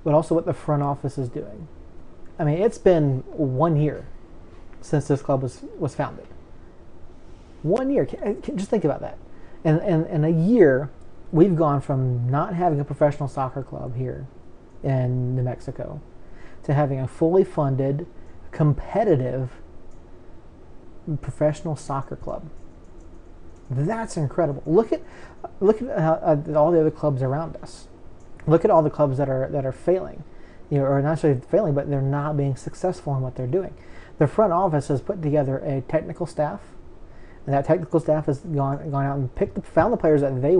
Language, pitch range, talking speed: English, 125-160 Hz, 175 wpm